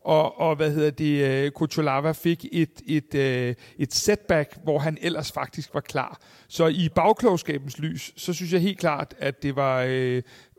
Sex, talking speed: male, 170 wpm